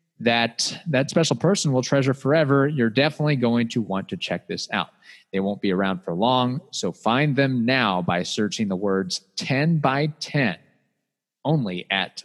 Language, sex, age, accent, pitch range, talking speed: English, male, 30-49, American, 105-150 Hz, 170 wpm